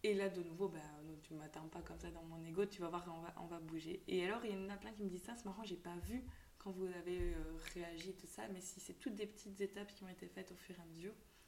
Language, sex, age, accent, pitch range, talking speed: French, female, 20-39, French, 170-195 Hz, 320 wpm